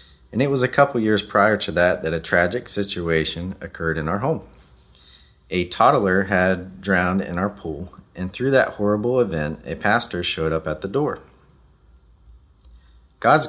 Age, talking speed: 40-59, 165 wpm